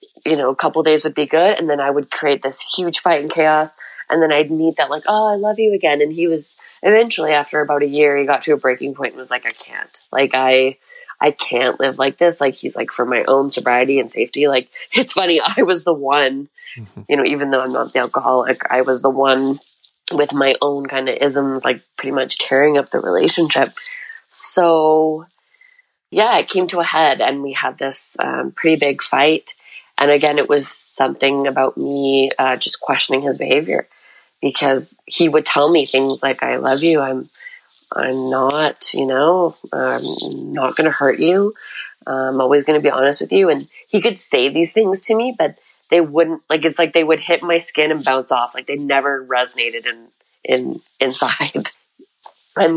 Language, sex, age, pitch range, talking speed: English, female, 20-39, 135-165 Hz, 205 wpm